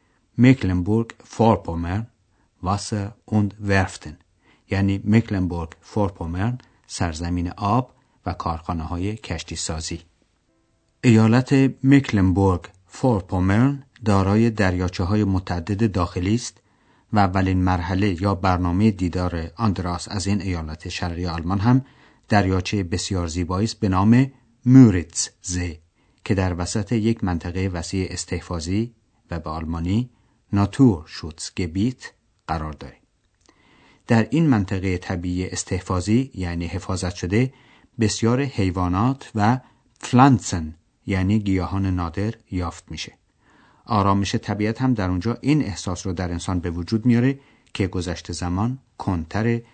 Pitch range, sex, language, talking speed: 90-115 Hz, male, Persian, 110 wpm